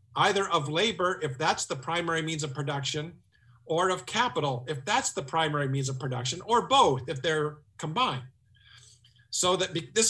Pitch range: 130-190 Hz